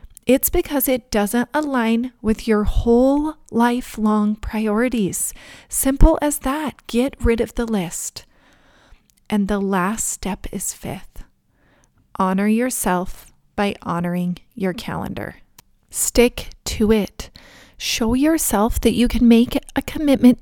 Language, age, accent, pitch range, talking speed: English, 30-49, American, 195-245 Hz, 120 wpm